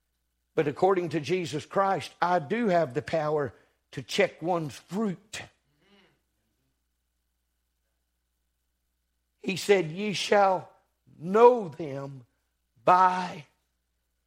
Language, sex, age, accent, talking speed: English, male, 60-79, American, 90 wpm